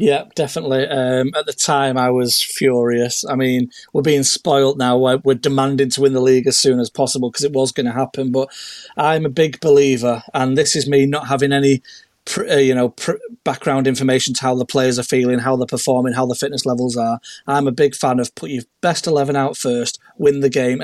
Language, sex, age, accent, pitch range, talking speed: English, male, 30-49, British, 130-140 Hz, 215 wpm